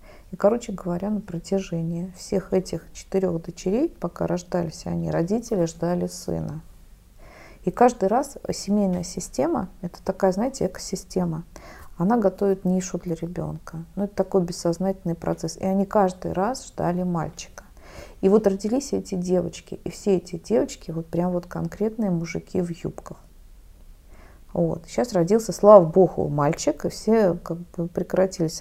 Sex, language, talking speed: female, Russian, 135 wpm